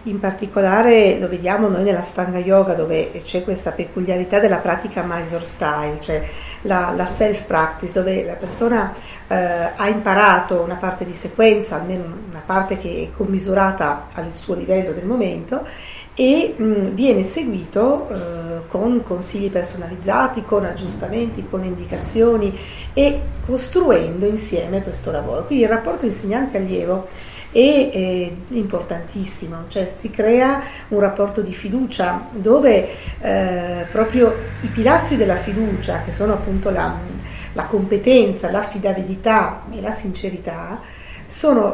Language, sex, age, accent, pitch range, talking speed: Italian, female, 50-69, native, 185-225 Hz, 130 wpm